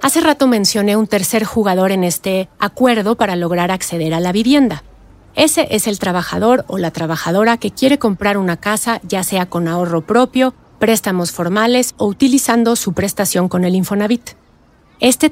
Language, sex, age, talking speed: Spanish, female, 40-59, 165 wpm